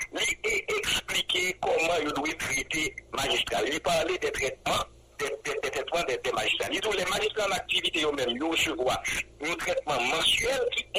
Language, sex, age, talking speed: English, male, 60-79, 140 wpm